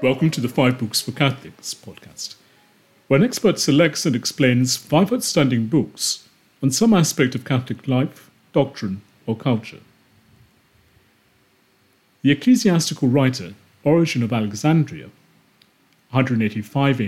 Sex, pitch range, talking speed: male, 115-145 Hz, 115 wpm